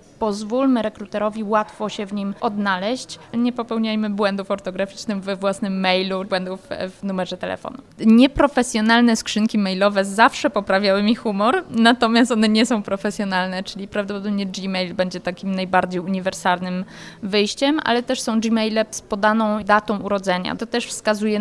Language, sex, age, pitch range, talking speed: Polish, female, 20-39, 195-225 Hz, 135 wpm